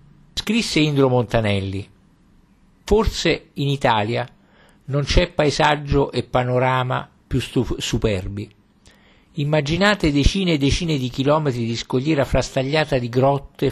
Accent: native